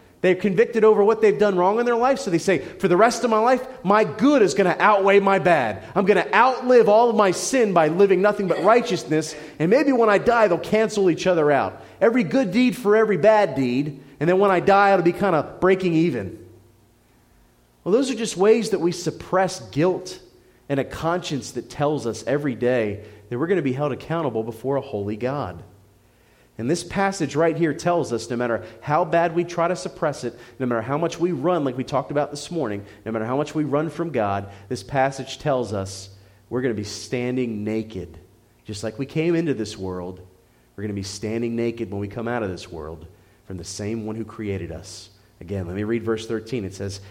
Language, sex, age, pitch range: English, male, 30-49, 110-180 Hz